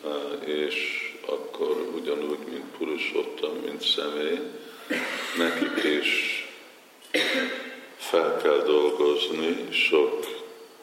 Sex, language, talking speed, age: male, Hungarian, 70 wpm, 50-69